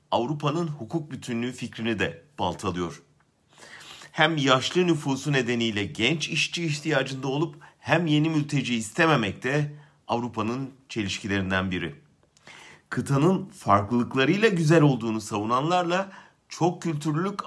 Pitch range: 110-155 Hz